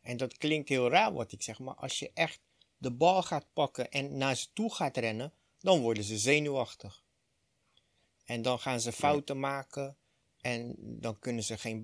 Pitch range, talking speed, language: 130-175 Hz, 190 wpm, Dutch